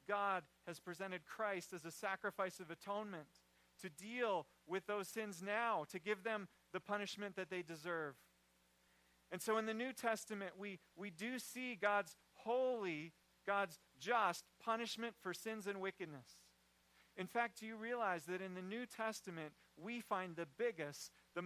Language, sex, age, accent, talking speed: English, male, 40-59, American, 160 wpm